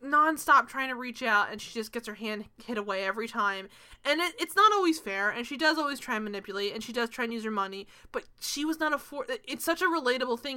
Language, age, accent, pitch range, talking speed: English, 20-39, American, 210-255 Hz, 260 wpm